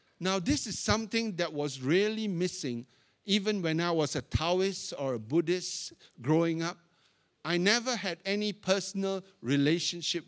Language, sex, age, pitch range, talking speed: English, male, 60-79, 155-210 Hz, 145 wpm